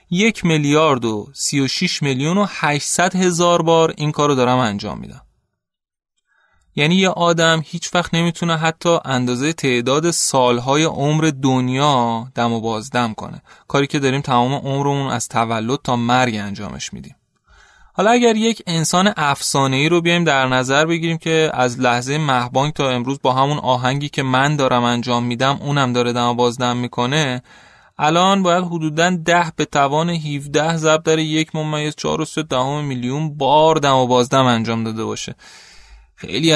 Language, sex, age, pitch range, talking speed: Persian, male, 20-39, 125-165 Hz, 160 wpm